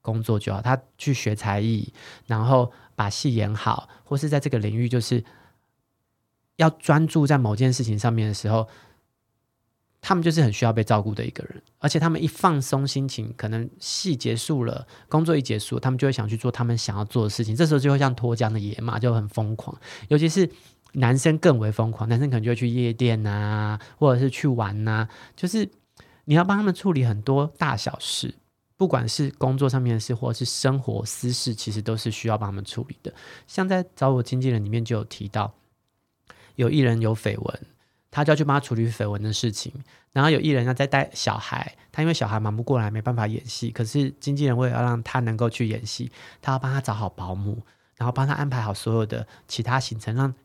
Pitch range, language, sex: 110-135 Hz, Chinese, male